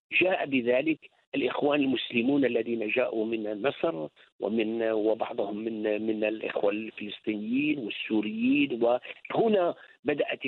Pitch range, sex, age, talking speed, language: 115-175 Hz, male, 50-69, 90 wpm, English